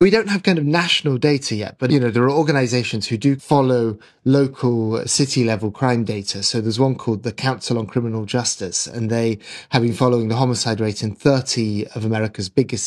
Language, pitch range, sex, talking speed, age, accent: English, 110-130 Hz, male, 200 wpm, 20-39, British